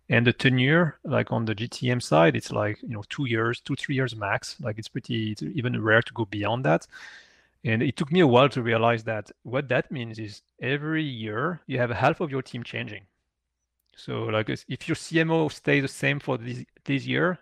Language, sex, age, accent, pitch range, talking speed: English, male, 30-49, French, 110-140 Hz, 210 wpm